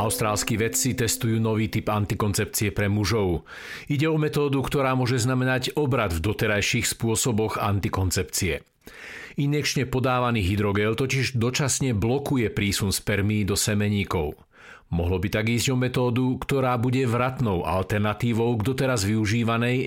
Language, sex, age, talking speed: Slovak, male, 50-69, 125 wpm